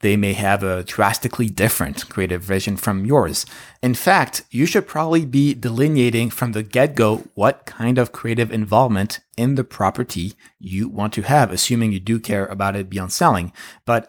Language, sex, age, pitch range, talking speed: English, male, 30-49, 105-125 Hz, 175 wpm